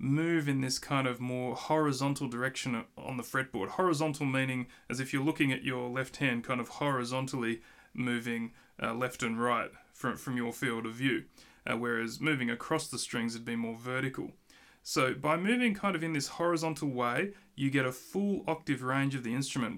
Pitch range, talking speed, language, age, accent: 125-155 Hz, 190 wpm, English, 30-49, Australian